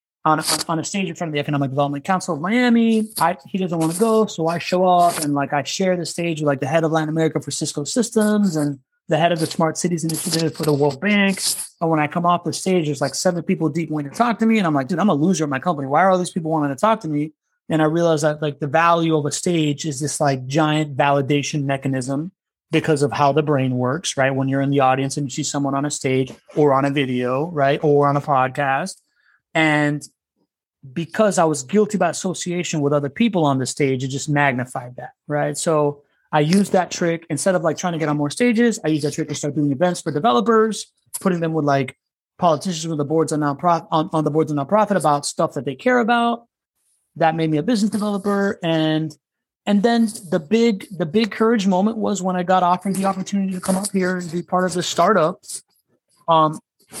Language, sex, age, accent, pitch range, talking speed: English, male, 30-49, American, 145-185 Hz, 240 wpm